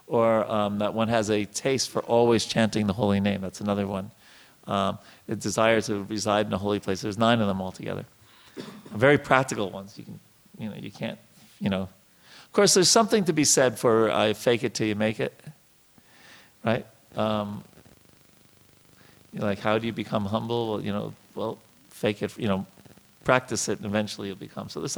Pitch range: 100-120 Hz